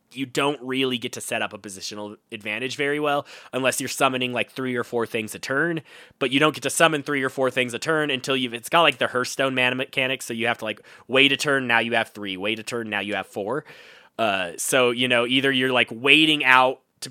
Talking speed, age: 255 wpm, 20-39